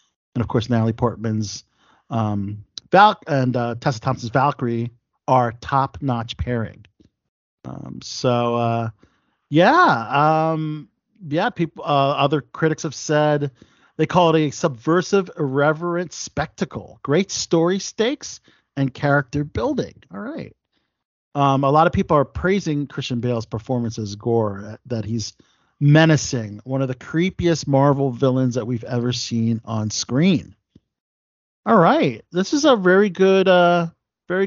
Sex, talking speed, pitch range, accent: male, 140 wpm, 120-160 Hz, American